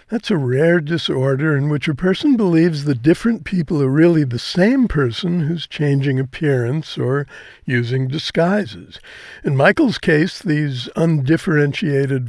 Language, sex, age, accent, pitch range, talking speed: English, male, 60-79, American, 130-170 Hz, 135 wpm